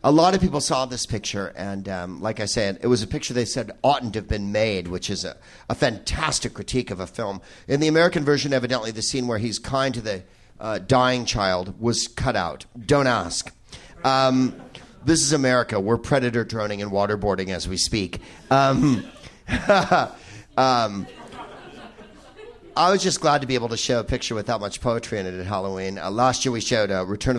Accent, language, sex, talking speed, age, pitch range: American, English, male, 195 wpm, 50-69, 100-130 Hz